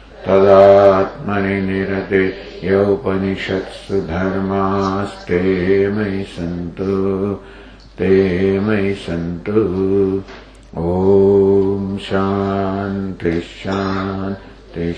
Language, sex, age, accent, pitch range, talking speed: English, male, 60-79, Indian, 95-100 Hz, 50 wpm